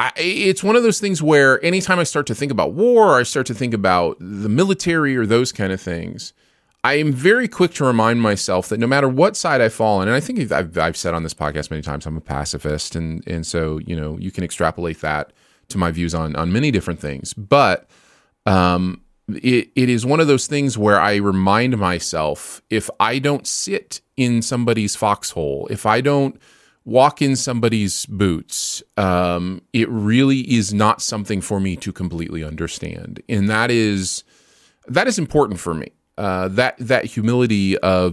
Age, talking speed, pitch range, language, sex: 30-49, 195 wpm, 90-125 Hz, English, male